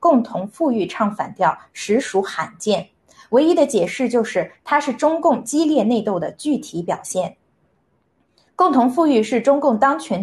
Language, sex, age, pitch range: Chinese, female, 20-39, 195-285 Hz